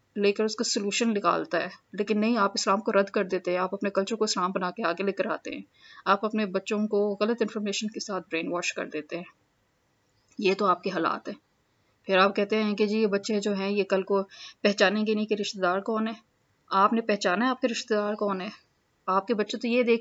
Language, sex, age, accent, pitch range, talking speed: English, female, 20-39, Indian, 195-235 Hz, 160 wpm